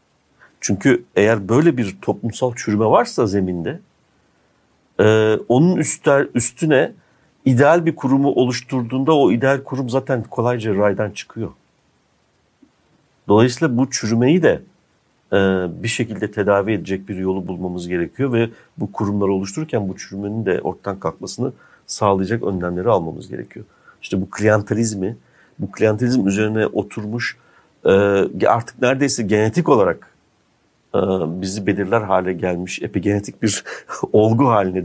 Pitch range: 100-125 Hz